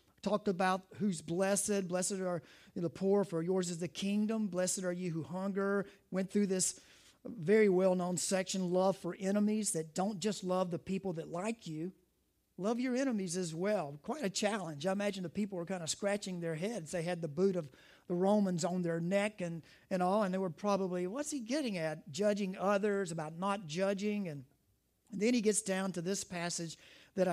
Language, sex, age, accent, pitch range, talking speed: English, male, 40-59, American, 170-205 Hz, 200 wpm